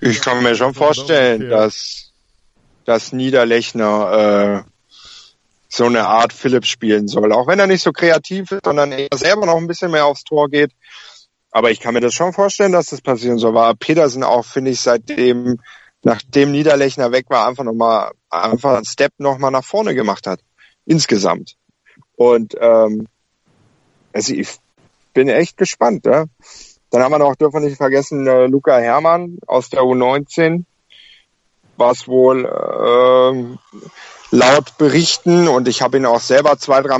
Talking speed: 160 wpm